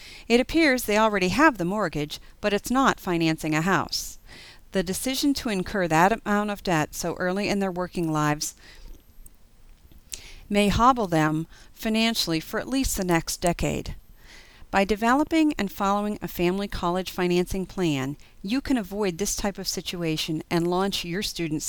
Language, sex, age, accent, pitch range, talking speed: English, female, 40-59, American, 160-215 Hz, 160 wpm